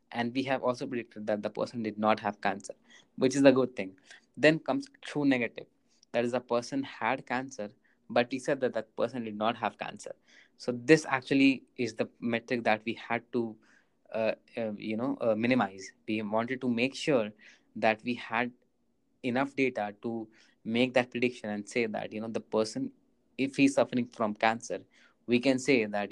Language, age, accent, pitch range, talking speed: English, 20-39, Indian, 110-130 Hz, 190 wpm